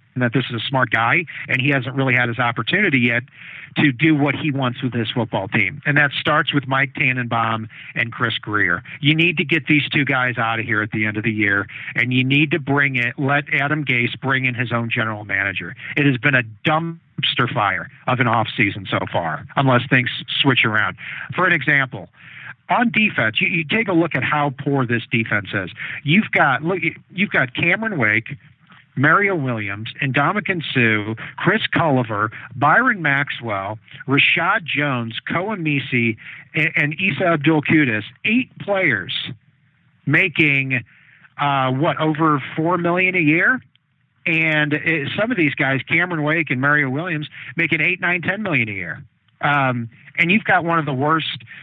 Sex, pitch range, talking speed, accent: male, 125-160 Hz, 180 wpm, American